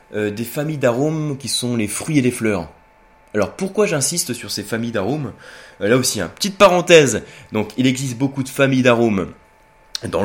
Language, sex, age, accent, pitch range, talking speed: French, male, 20-39, French, 105-150 Hz, 175 wpm